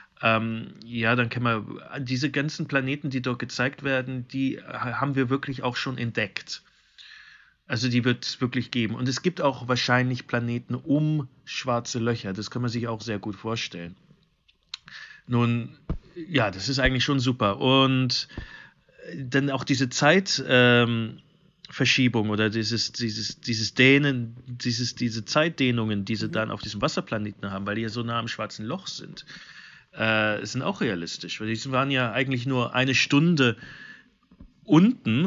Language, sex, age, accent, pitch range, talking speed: German, male, 40-59, German, 115-135 Hz, 155 wpm